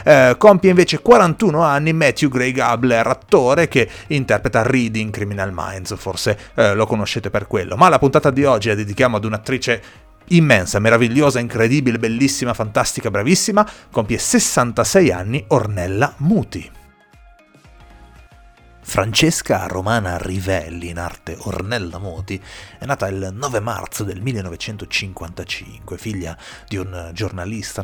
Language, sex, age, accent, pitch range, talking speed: Italian, male, 30-49, native, 95-125 Hz, 125 wpm